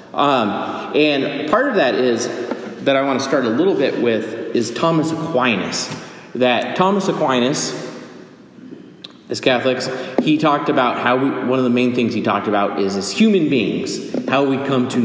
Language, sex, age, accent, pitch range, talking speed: English, male, 30-49, American, 105-135 Hz, 175 wpm